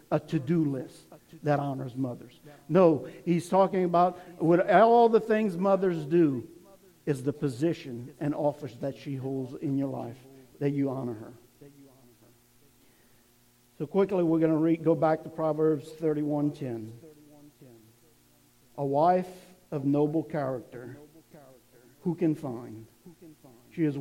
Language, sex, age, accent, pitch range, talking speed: English, male, 50-69, American, 140-170 Hz, 125 wpm